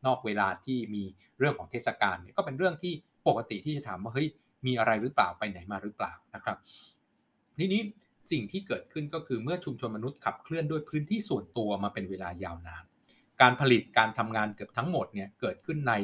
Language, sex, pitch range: Thai, male, 100-140 Hz